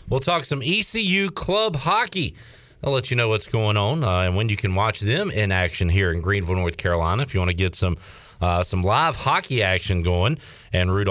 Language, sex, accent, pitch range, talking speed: English, male, American, 90-115 Hz, 220 wpm